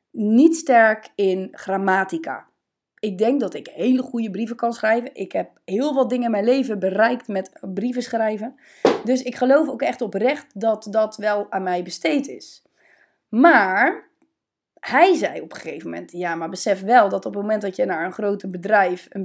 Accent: Dutch